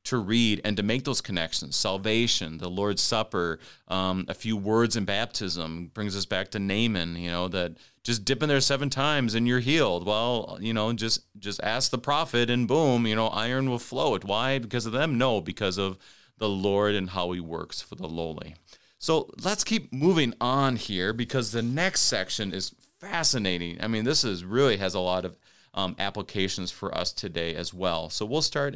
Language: English